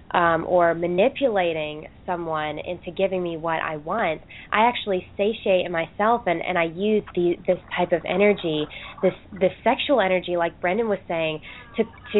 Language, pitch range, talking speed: English, 175-205 Hz, 160 wpm